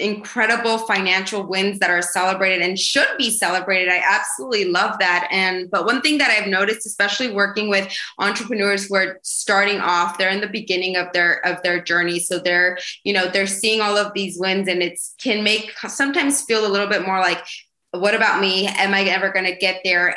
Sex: female